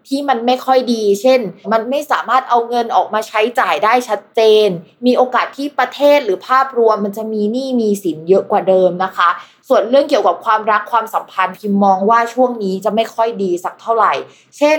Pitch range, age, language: 190-245 Hz, 20-39, Thai